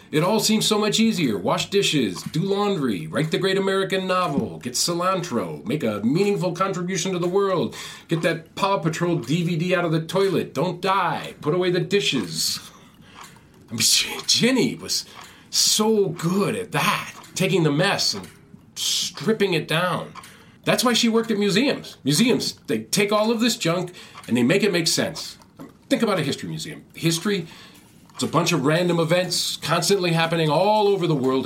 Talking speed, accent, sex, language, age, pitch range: 170 wpm, American, male, English, 40-59, 165-210 Hz